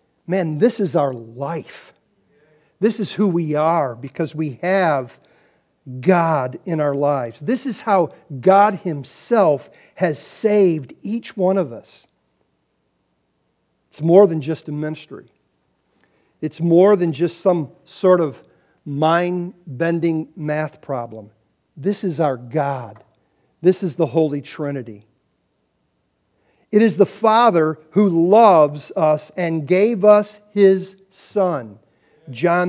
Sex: male